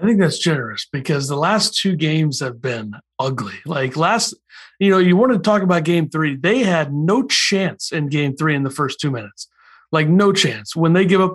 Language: English